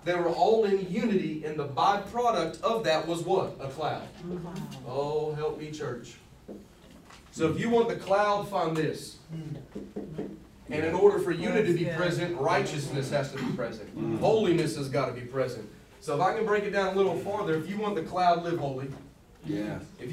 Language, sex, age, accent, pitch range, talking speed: English, male, 30-49, American, 150-195 Hz, 190 wpm